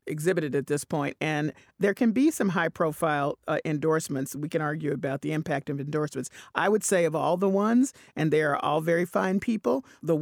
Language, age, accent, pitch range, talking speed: English, 40-59, American, 150-195 Hz, 205 wpm